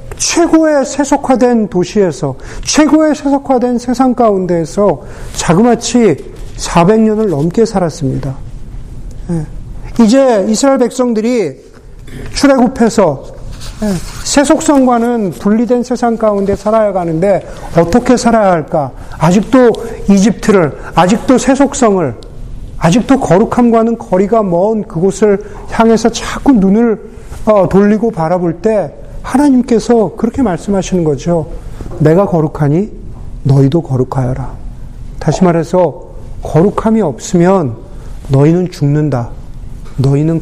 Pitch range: 140-230 Hz